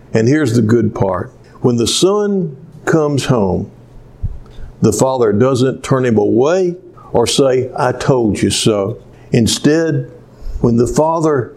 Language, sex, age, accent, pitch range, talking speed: English, male, 60-79, American, 115-170 Hz, 135 wpm